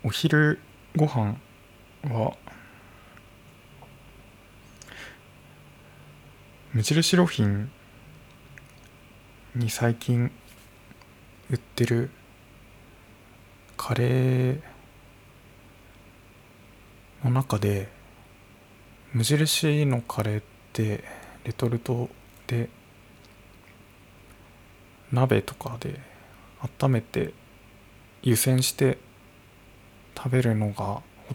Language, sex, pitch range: Japanese, male, 100-125 Hz